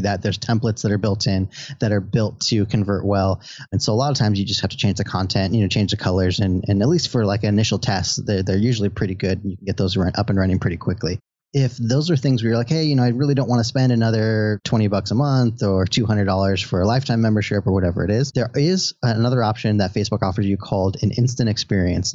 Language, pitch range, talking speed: English, 100-125 Hz, 265 wpm